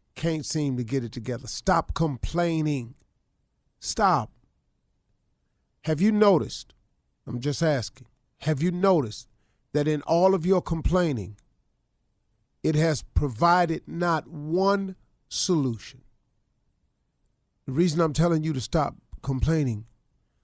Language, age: English, 40-59